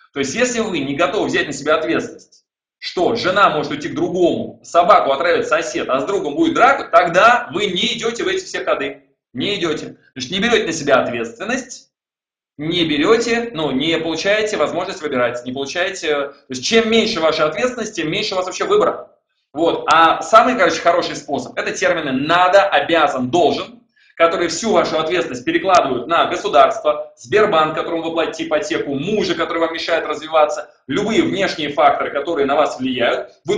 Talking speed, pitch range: 175 wpm, 160-225 Hz